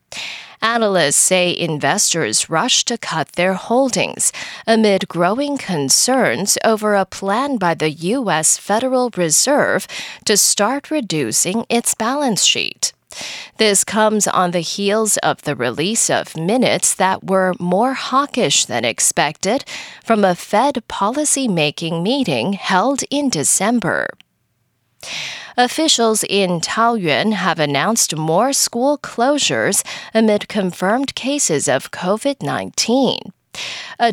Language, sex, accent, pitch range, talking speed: English, female, American, 175-250 Hz, 110 wpm